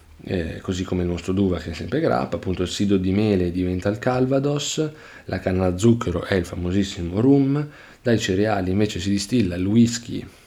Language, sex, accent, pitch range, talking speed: Italian, male, native, 90-105 Hz, 190 wpm